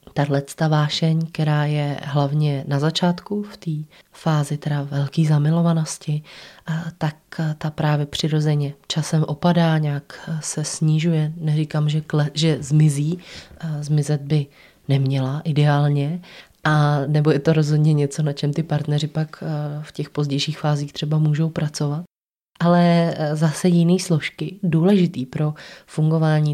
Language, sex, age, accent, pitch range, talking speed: Czech, female, 20-39, native, 145-160 Hz, 125 wpm